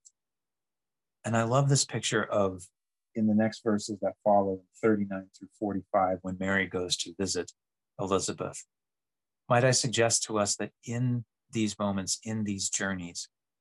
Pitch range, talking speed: 95-110 Hz, 145 wpm